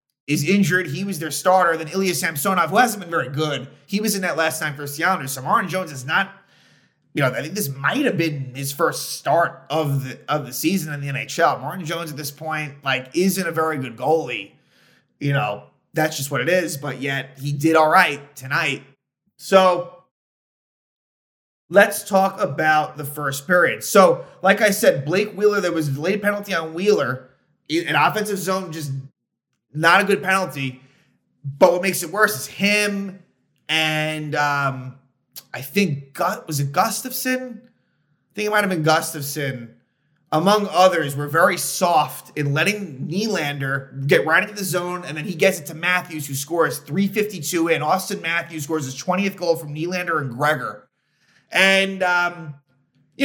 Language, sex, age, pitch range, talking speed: English, male, 30-49, 145-190 Hz, 180 wpm